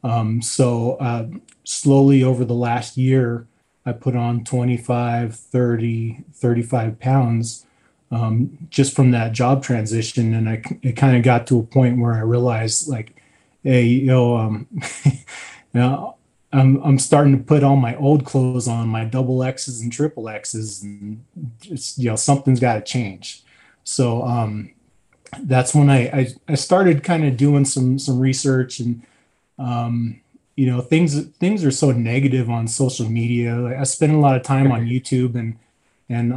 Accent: American